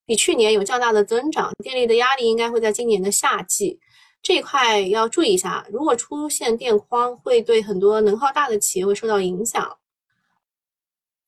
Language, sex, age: Chinese, female, 20-39